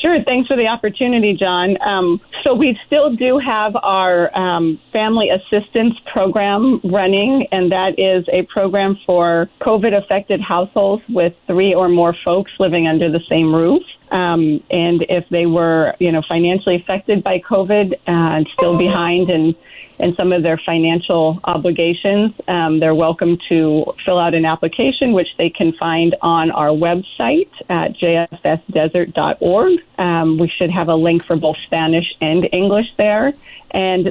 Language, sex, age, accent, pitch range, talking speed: English, female, 30-49, American, 165-195 Hz, 150 wpm